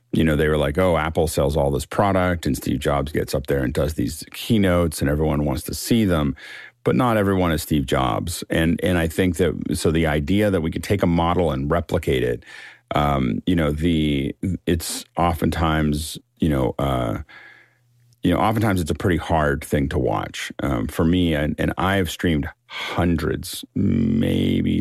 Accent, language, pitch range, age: American, English, 75-90 Hz, 40-59